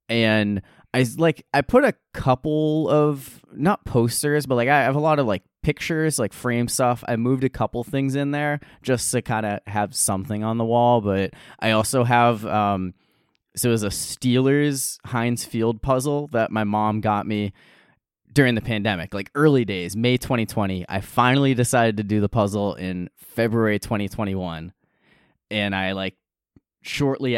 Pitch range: 100-130 Hz